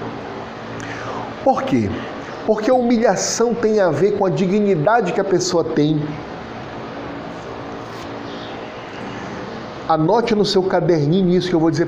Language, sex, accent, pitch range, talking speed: Portuguese, male, Brazilian, 155-220 Hz, 120 wpm